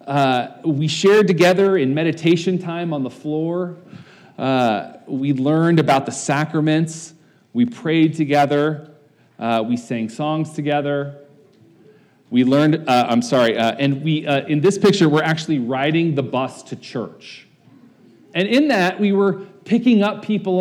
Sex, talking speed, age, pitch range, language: male, 150 wpm, 40-59, 140-180 Hz, English